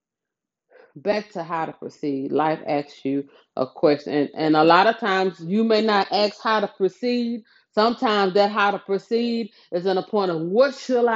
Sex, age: female, 30-49